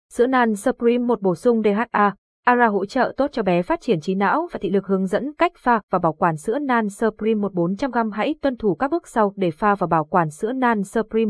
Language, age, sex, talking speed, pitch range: Vietnamese, 20-39, female, 245 wpm, 185-240 Hz